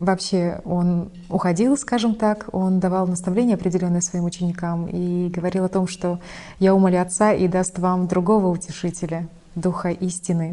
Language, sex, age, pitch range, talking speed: Russian, female, 30-49, 175-220 Hz, 150 wpm